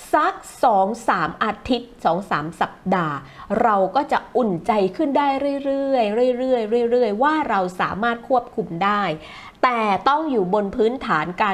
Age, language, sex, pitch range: 30-49, Thai, female, 205-295 Hz